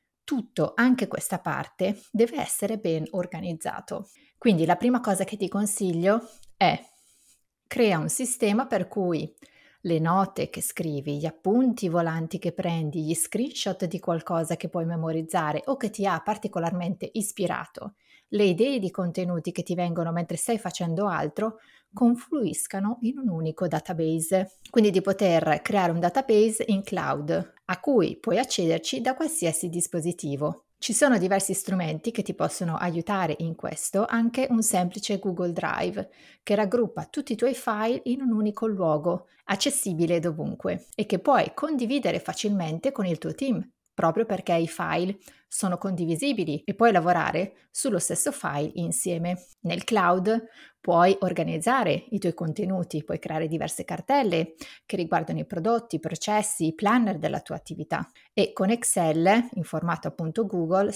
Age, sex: 30-49, female